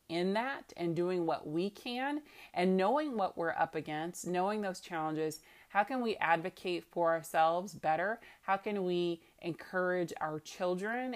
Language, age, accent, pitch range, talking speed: English, 30-49, American, 160-185 Hz, 155 wpm